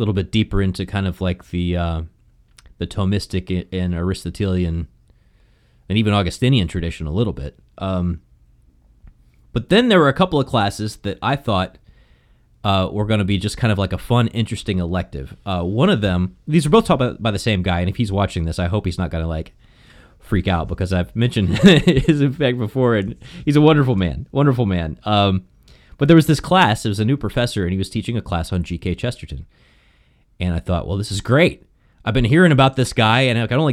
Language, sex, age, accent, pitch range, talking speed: English, male, 30-49, American, 90-125 Hz, 215 wpm